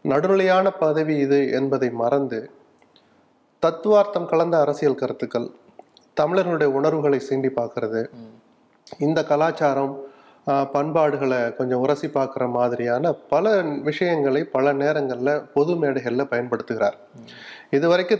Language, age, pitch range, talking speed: Tamil, 30-49, 130-160 Hz, 95 wpm